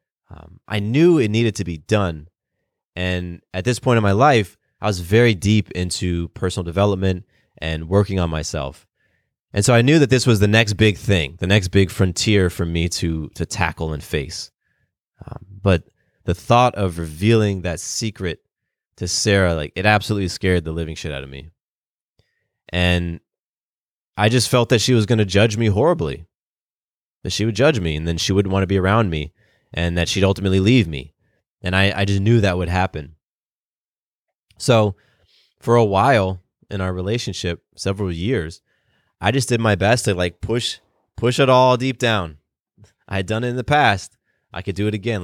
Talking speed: 185 wpm